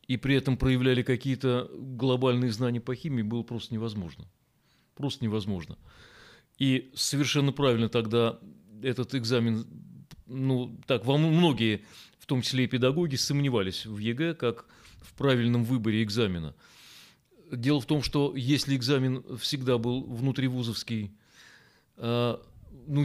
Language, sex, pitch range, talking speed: Russian, male, 115-135 Hz, 120 wpm